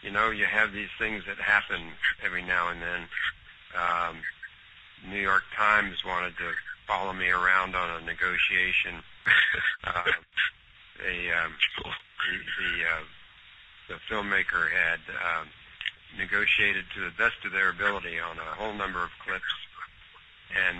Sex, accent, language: male, American, English